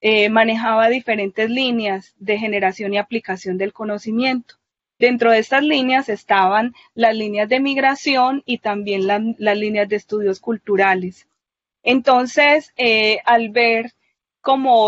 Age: 20-39